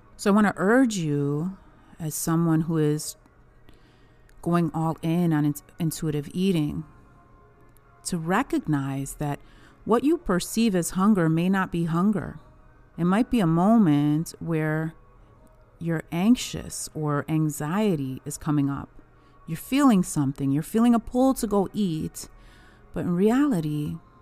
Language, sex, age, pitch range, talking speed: English, female, 30-49, 150-190 Hz, 135 wpm